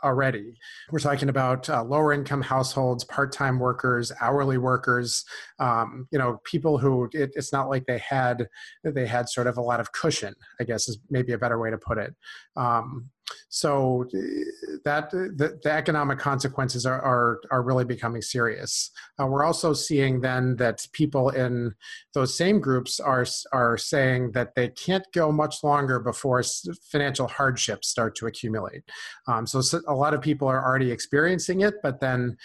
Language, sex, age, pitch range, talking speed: English, male, 30-49, 125-150 Hz, 165 wpm